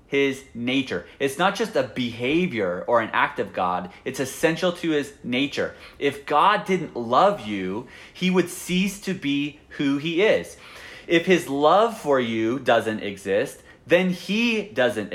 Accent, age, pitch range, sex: American, 30-49, 135-185 Hz, male